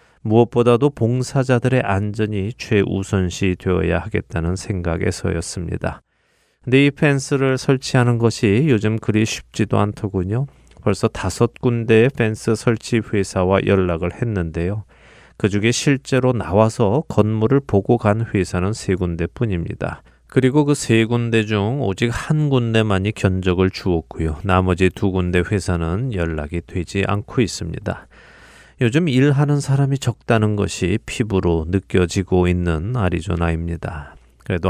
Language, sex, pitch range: Korean, male, 90-115 Hz